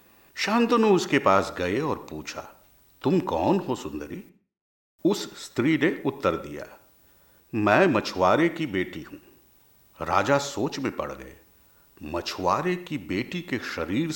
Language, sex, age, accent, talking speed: Hindi, male, 50-69, native, 125 wpm